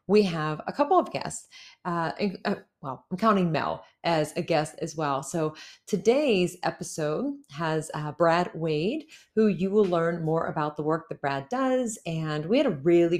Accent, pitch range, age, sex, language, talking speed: American, 160-215 Hz, 40-59, female, English, 180 wpm